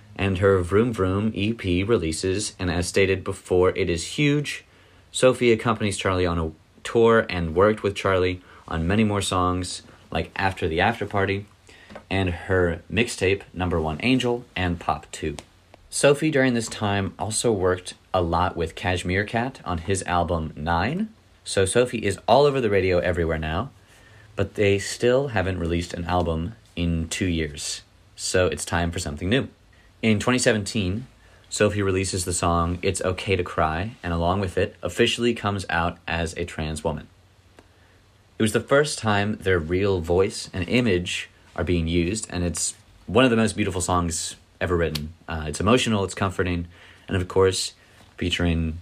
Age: 30-49